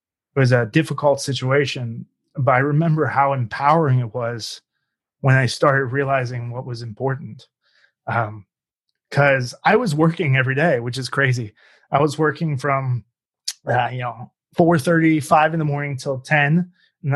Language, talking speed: English, 150 wpm